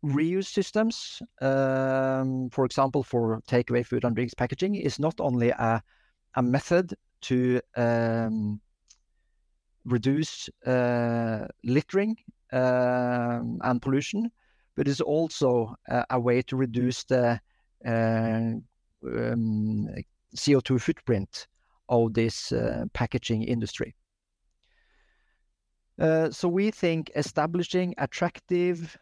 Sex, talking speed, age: male, 100 wpm, 50-69